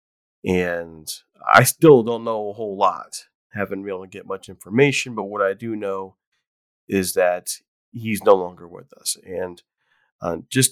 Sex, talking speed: male, 170 wpm